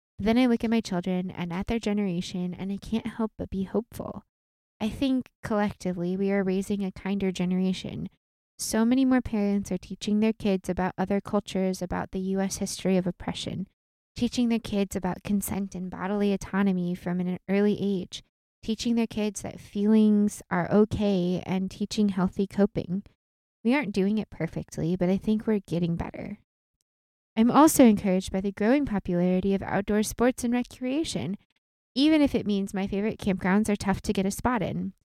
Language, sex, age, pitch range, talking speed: English, female, 20-39, 185-215 Hz, 175 wpm